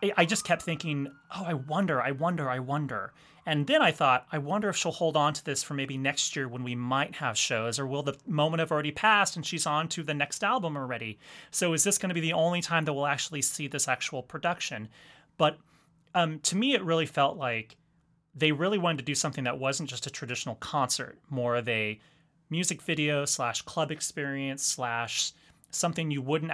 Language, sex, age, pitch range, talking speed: English, male, 30-49, 135-165 Hz, 215 wpm